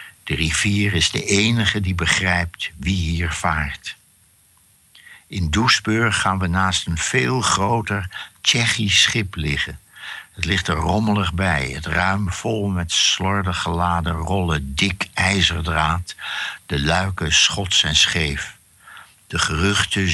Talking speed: 125 wpm